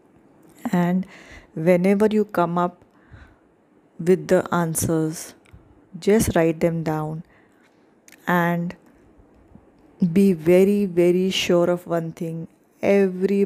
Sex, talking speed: female, 95 wpm